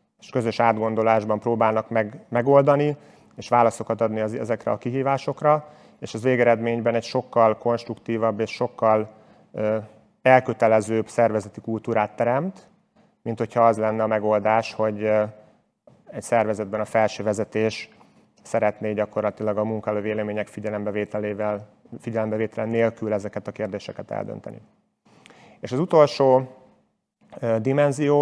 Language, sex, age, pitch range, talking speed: Hungarian, male, 30-49, 110-125 Hz, 115 wpm